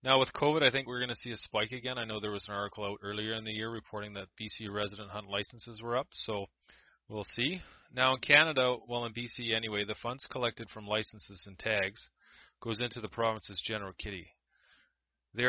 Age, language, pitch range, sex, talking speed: 30-49, English, 100-115 Hz, male, 215 wpm